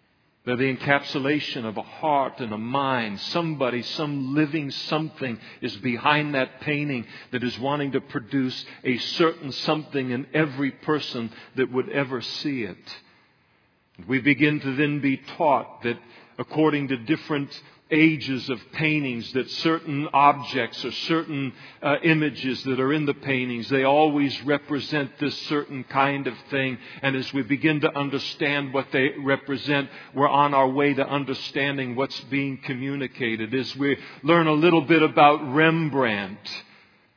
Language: English